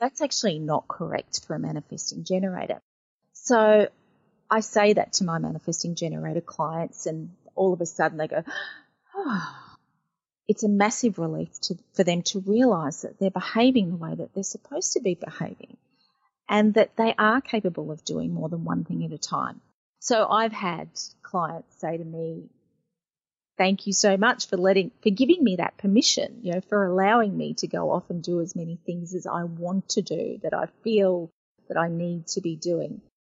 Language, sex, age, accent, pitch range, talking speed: English, female, 30-49, Australian, 170-215 Hz, 185 wpm